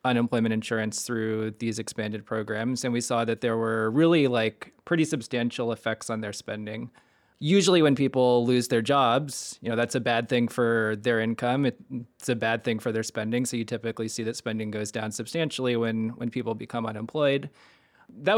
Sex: male